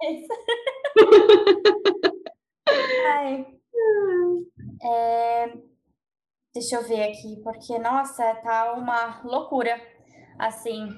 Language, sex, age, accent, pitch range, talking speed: Portuguese, female, 10-29, Brazilian, 245-330 Hz, 65 wpm